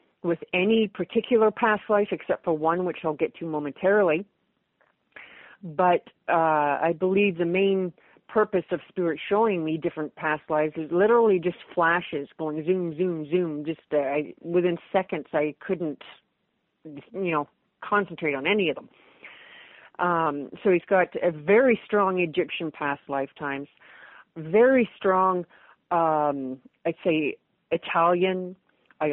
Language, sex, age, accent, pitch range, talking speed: English, female, 40-59, American, 155-185 Hz, 135 wpm